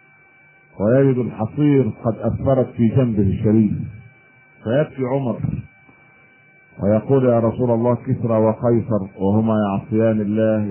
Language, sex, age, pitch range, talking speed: Arabic, male, 40-59, 105-130 Hz, 100 wpm